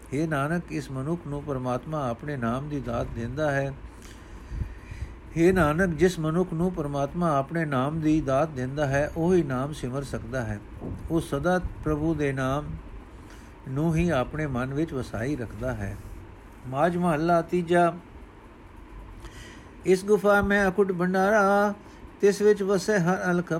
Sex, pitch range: male, 145-180 Hz